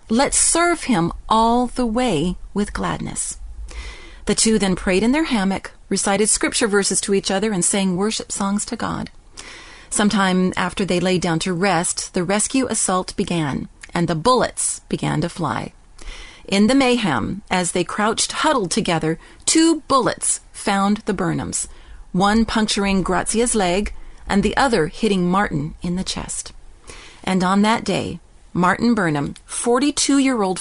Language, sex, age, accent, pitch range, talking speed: English, female, 40-59, American, 185-240 Hz, 150 wpm